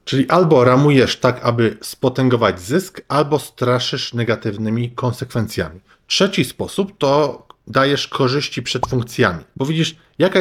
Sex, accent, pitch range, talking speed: male, native, 115-135 Hz, 120 wpm